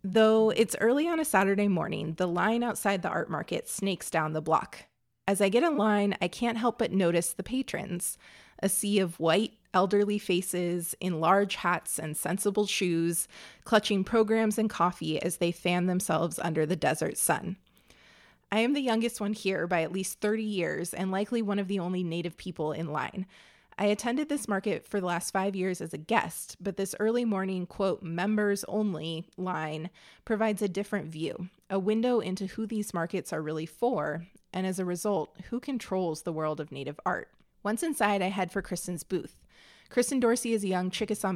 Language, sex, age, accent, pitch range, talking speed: English, female, 20-39, American, 175-210 Hz, 190 wpm